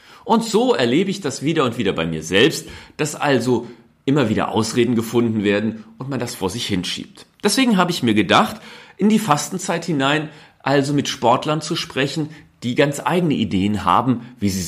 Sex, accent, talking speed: male, German, 185 wpm